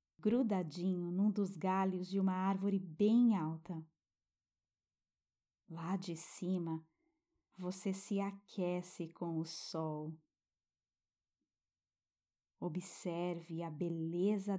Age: 20-39